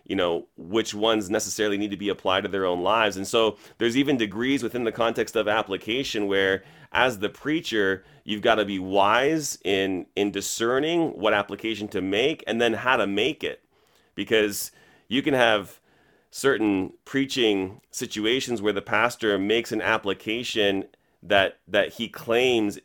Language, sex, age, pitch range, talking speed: English, male, 30-49, 100-120 Hz, 165 wpm